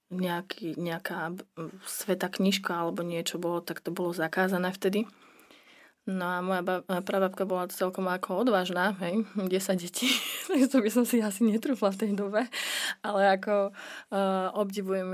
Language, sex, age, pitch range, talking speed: Slovak, female, 20-39, 180-210 Hz, 145 wpm